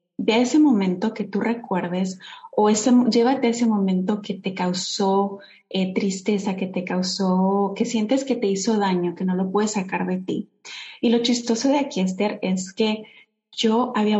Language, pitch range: Spanish, 190-235 Hz